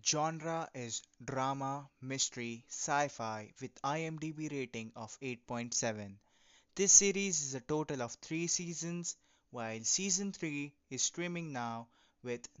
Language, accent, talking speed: English, Indian, 120 wpm